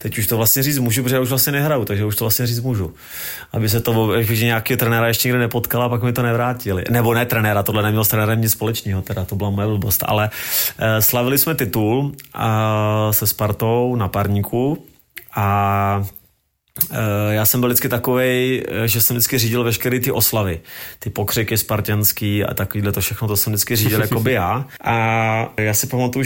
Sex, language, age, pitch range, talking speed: male, Czech, 30-49, 110-125 Hz, 195 wpm